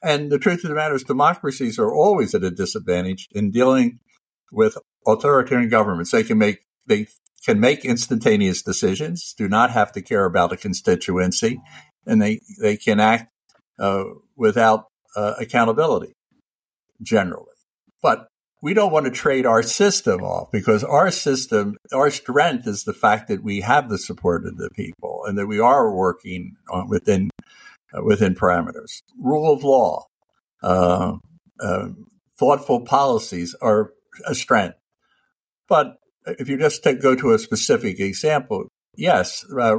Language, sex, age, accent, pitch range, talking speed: English, male, 60-79, American, 100-150 Hz, 150 wpm